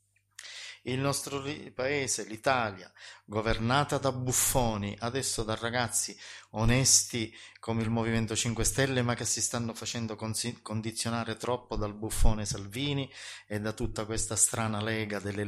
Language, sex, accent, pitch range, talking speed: Italian, male, native, 105-120 Hz, 130 wpm